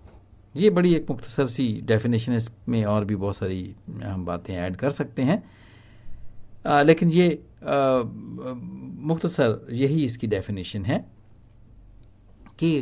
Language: Hindi